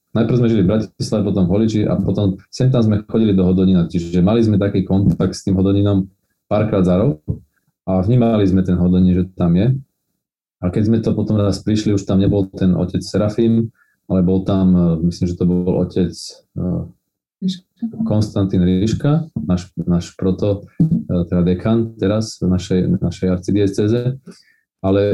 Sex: male